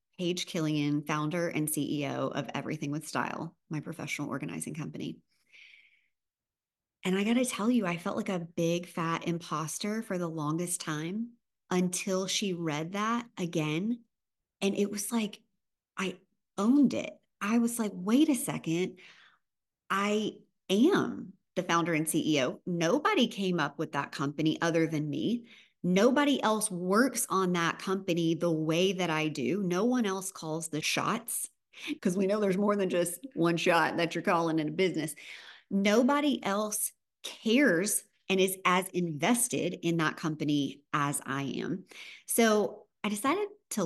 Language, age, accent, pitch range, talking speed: English, 30-49, American, 160-210 Hz, 155 wpm